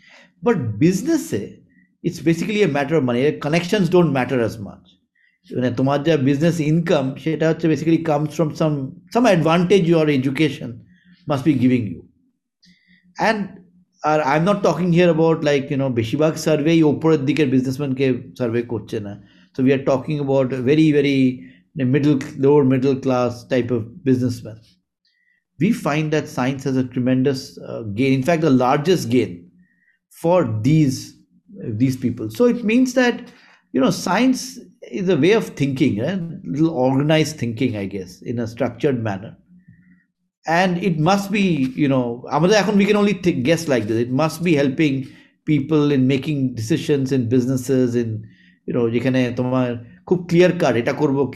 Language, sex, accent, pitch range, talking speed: Bengali, male, native, 130-175 Hz, 160 wpm